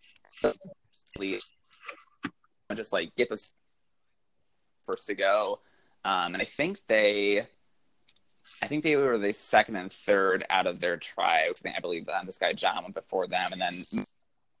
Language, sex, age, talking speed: English, male, 20-39, 155 wpm